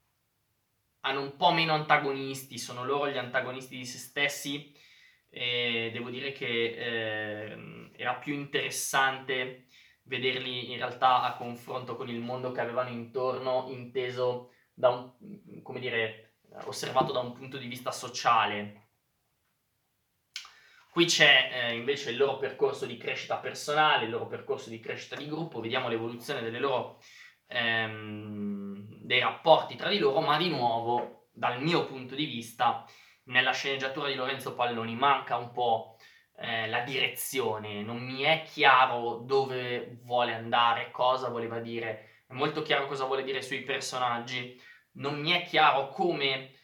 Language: Italian